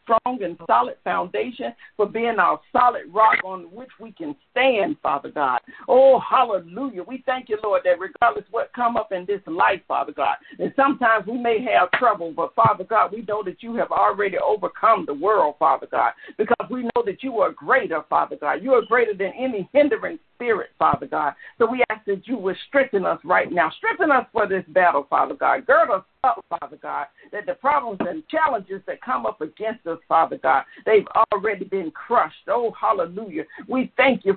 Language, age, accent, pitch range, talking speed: English, 50-69, American, 195-255 Hz, 195 wpm